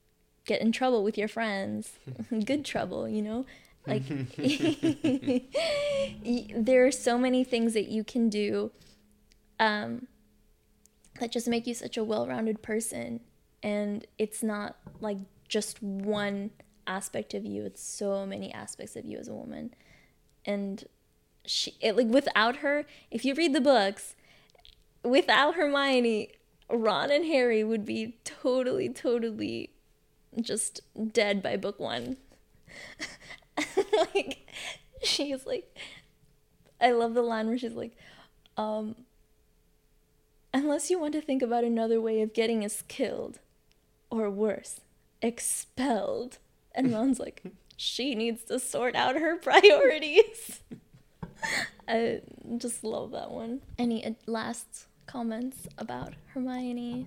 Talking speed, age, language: 125 wpm, 10-29, English